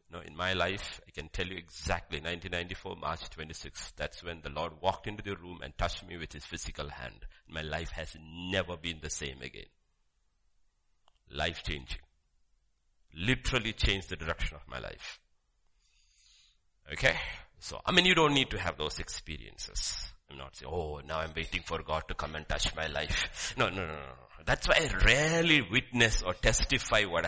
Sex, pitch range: male, 80-110 Hz